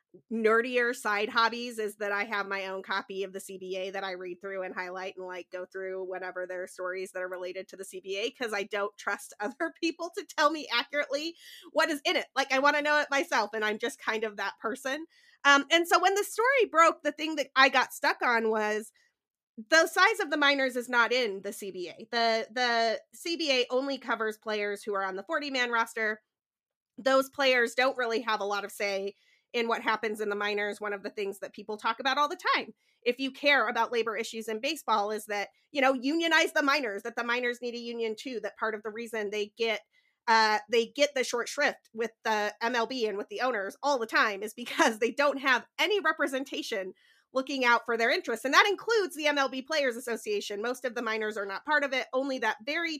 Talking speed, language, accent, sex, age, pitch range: 225 wpm, English, American, female, 30-49, 210-275 Hz